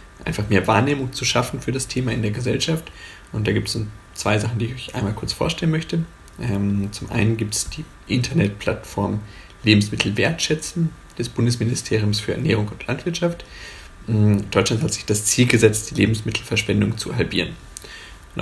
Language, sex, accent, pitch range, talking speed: German, male, German, 105-130 Hz, 165 wpm